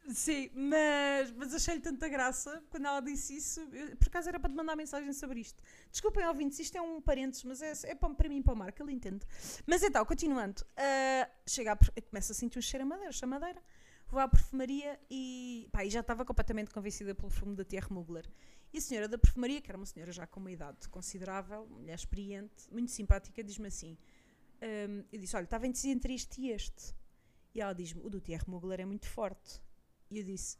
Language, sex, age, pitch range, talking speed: Portuguese, female, 30-49, 210-280 Hz, 210 wpm